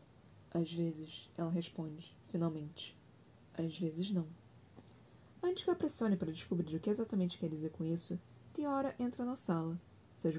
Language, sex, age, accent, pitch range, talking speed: Portuguese, female, 20-39, Brazilian, 165-220 Hz, 150 wpm